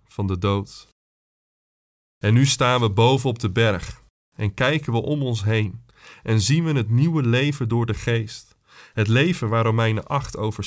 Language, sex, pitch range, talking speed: Dutch, male, 105-130 Hz, 180 wpm